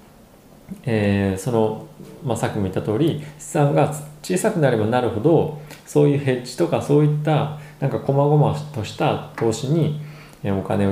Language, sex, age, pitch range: Japanese, male, 20-39, 105-150 Hz